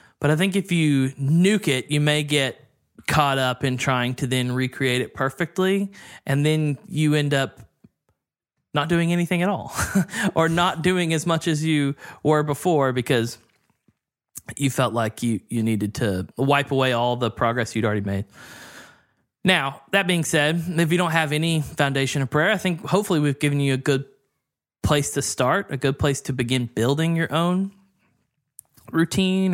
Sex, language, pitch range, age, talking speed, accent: male, English, 130-165 Hz, 20-39, 175 wpm, American